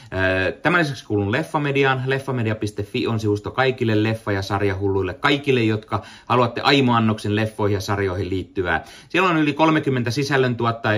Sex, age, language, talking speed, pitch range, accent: male, 30-49, Finnish, 130 wpm, 90-115 Hz, native